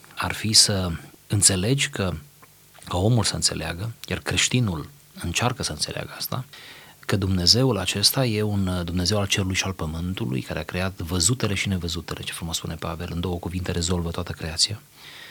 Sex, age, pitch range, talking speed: male, 30-49, 90-115 Hz, 165 wpm